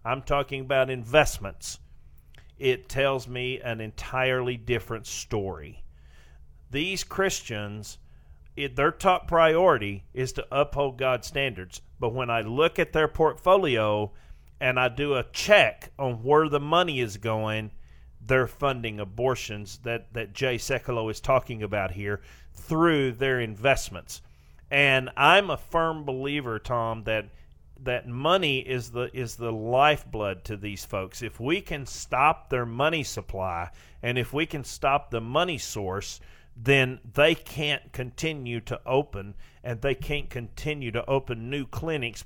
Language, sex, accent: English, male, American